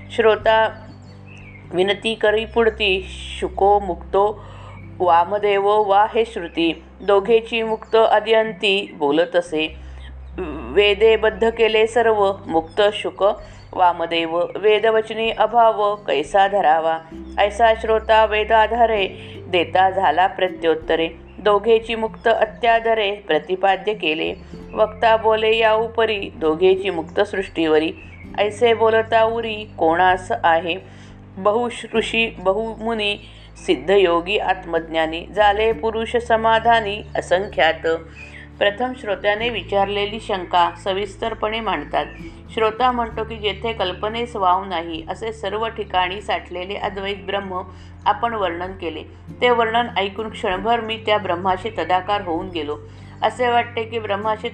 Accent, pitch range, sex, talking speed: native, 175-225 Hz, female, 100 wpm